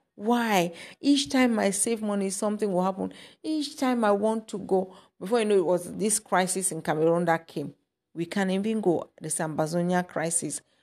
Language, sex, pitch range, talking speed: English, female, 185-260 Hz, 185 wpm